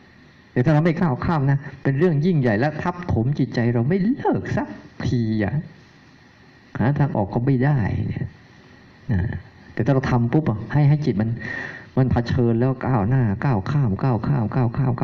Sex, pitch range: male, 120-150 Hz